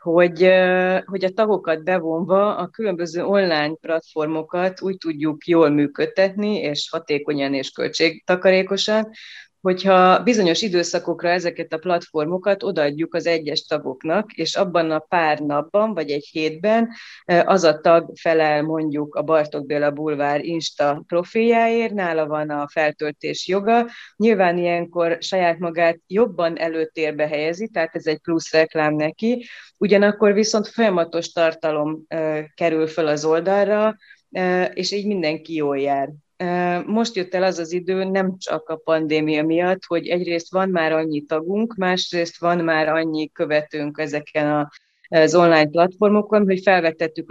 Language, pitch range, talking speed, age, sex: Hungarian, 155-185 Hz, 135 wpm, 30-49, female